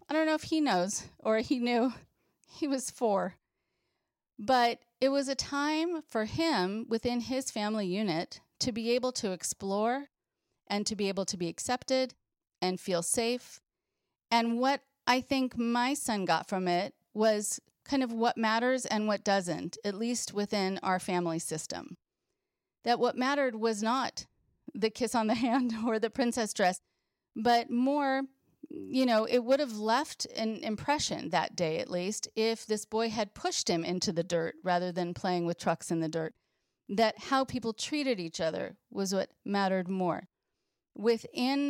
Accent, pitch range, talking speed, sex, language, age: American, 185-245 Hz, 170 wpm, female, English, 40-59